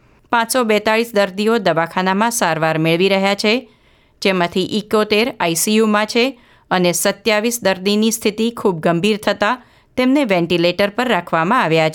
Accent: native